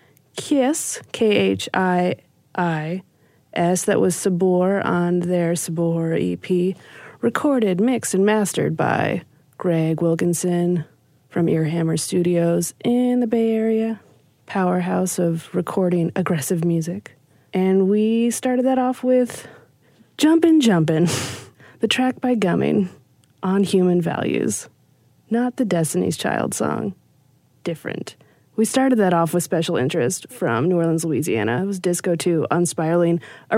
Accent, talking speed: American, 120 wpm